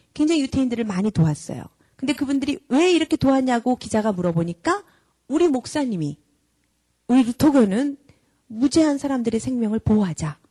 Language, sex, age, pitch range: Korean, female, 40-59, 190-290 Hz